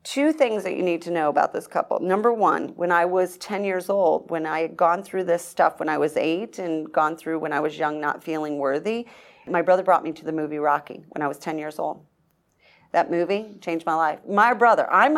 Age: 40-59